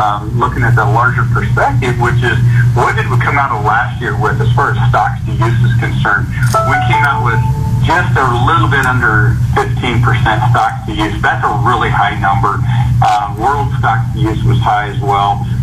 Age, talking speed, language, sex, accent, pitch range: 50-69, 200 wpm, English, male, American, 120-125 Hz